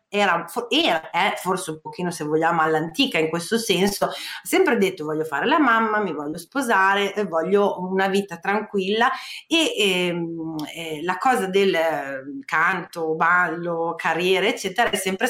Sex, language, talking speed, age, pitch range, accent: female, Italian, 155 wpm, 30-49, 170-215 Hz, native